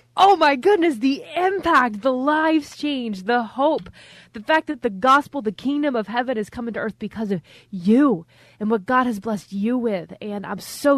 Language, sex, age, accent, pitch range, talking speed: English, female, 20-39, American, 190-240 Hz, 195 wpm